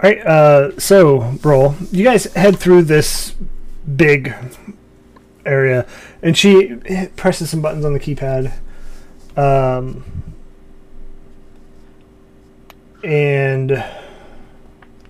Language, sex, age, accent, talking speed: English, male, 30-49, American, 85 wpm